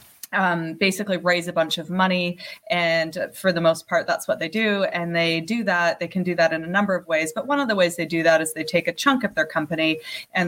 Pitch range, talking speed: 165-205 Hz, 265 wpm